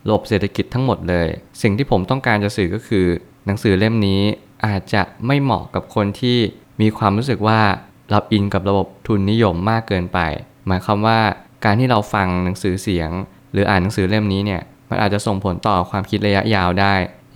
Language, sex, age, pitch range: Thai, male, 20-39, 95-115 Hz